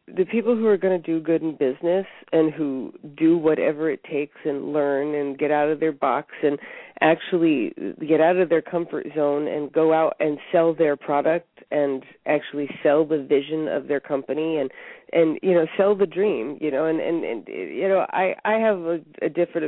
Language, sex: English, female